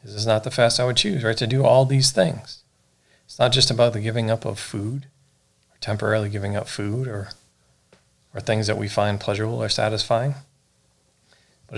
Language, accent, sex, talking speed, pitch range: English, American, male, 195 wpm, 105-130 Hz